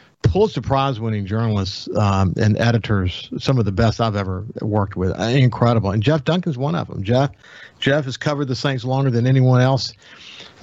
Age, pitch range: 50-69, 115-145 Hz